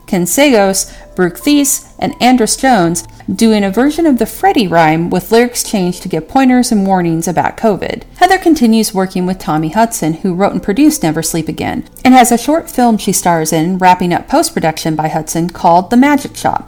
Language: English